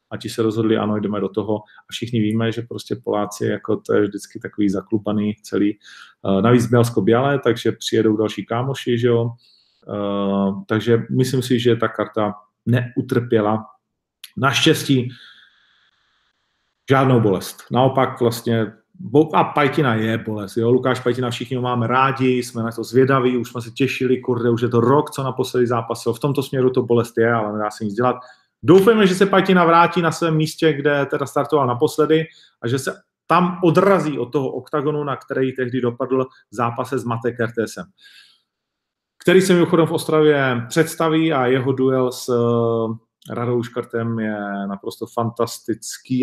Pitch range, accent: 115-150 Hz, native